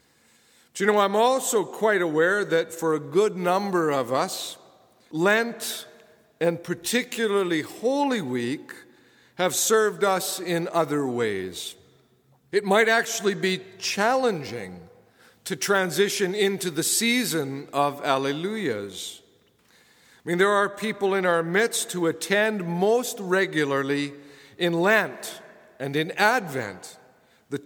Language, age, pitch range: English, 50-69, 155-215 Hz